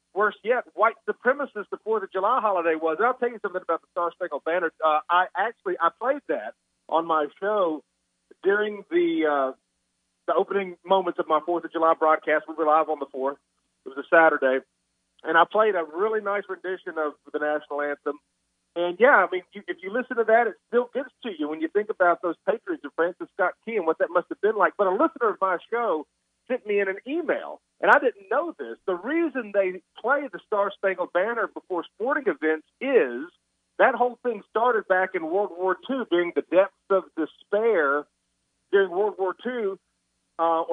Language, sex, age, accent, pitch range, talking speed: English, male, 40-59, American, 165-230 Hz, 205 wpm